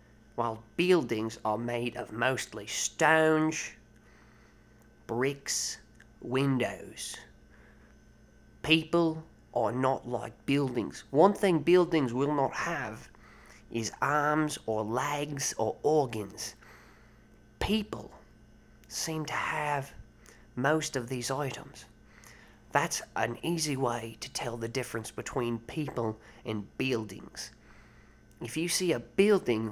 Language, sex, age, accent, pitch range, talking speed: English, male, 30-49, British, 115-155 Hz, 105 wpm